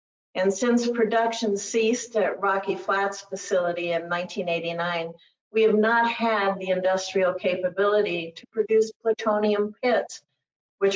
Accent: American